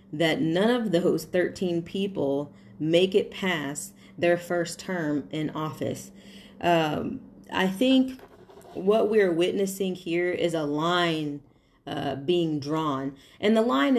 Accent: American